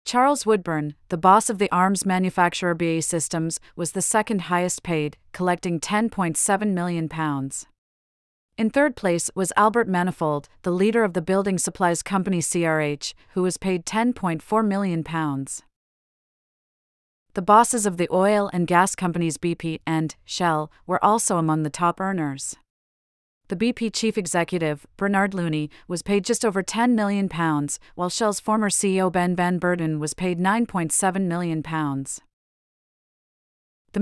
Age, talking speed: 40-59, 135 wpm